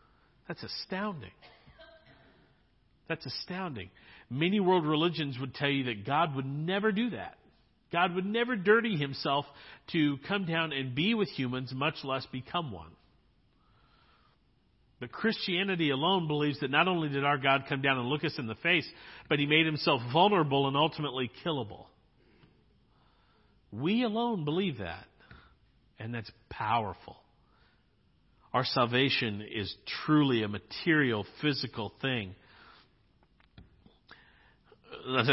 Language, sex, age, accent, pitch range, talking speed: English, male, 50-69, American, 125-160 Hz, 125 wpm